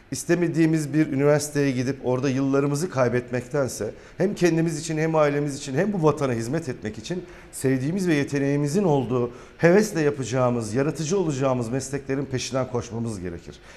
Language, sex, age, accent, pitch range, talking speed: Turkish, male, 40-59, native, 125-165 Hz, 135 wpm